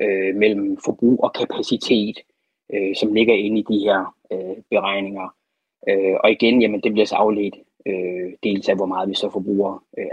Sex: male